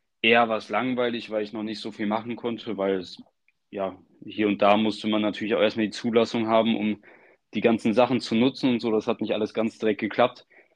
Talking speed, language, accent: 230 wpm, German, German